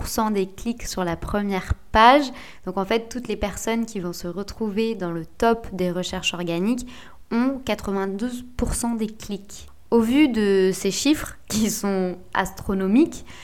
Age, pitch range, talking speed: 20-39, 190-230 Hz, 150 wpm